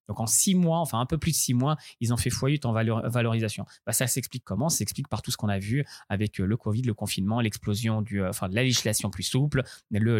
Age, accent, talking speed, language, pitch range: 20-39, French, 255 wpm, French, 110-140 Hz